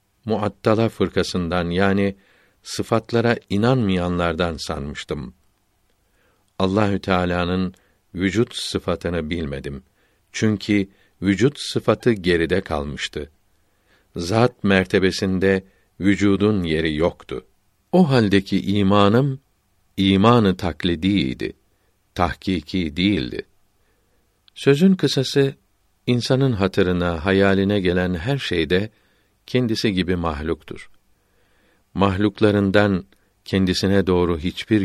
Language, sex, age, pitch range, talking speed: Turkish, male, 50-69, 90-105 Hz, 75 wpm